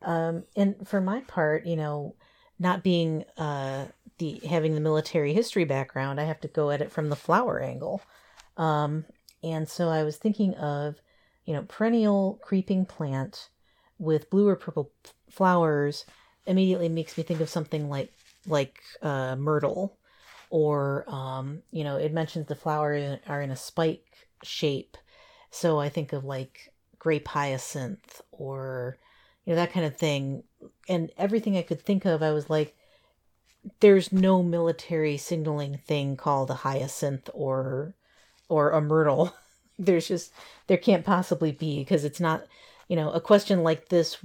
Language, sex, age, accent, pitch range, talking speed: English, female, 40-59, American, 145-185 Hz, 155 wpm